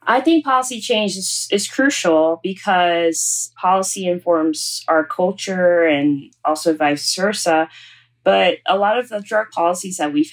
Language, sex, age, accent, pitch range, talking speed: English, female, 20-39, American, 150-185 Hz, 145 wpm